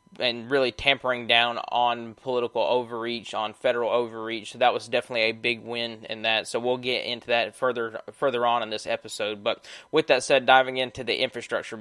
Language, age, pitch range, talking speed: English, 20-39, 115-125 Hz, 195 wpm